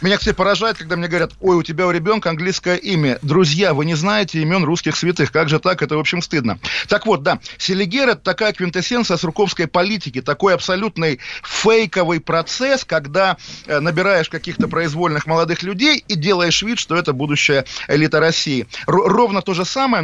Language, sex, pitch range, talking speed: Russian, male, 150-185 Hz, 175 wpm